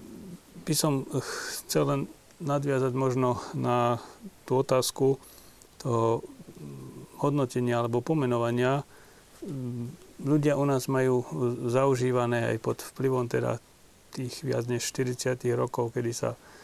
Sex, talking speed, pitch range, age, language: male, 105 wpm, 120-130 Hz, 40-59, Slovak